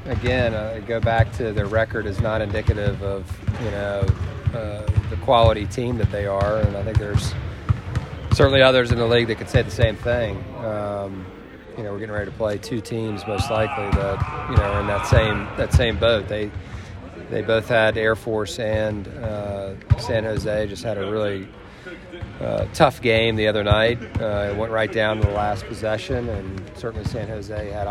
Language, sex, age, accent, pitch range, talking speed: English, male, 40-59, American, 105-115 Hz, 195 wpm